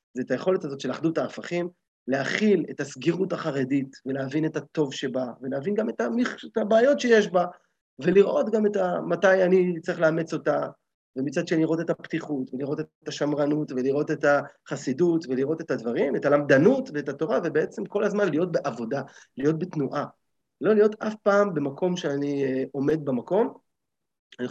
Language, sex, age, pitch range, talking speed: Hebrew, male, 30-49, 130-175 Hz, 150 wpm